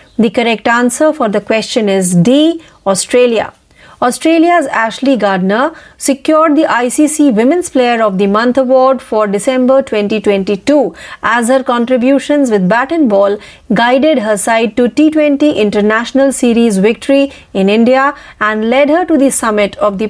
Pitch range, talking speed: 215-280 Hz, 145 wpm